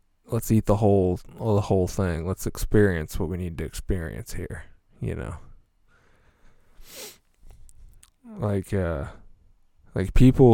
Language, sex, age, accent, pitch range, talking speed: English, male, 20-39, American, 85-110 Hz, 120 wpm